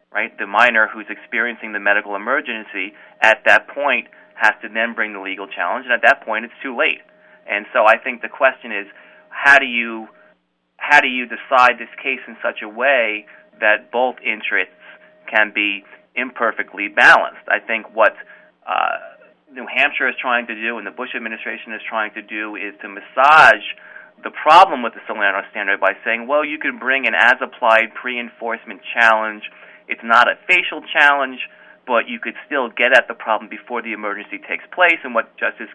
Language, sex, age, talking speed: English, male, 30-49, 185 wpm